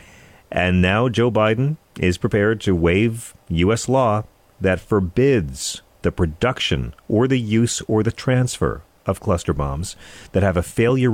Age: 40-59